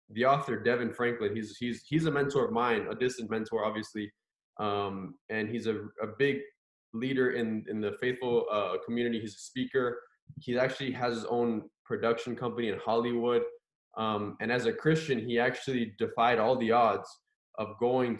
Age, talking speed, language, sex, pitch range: 20-39, 175 wpm, English, male, 110-130 Hz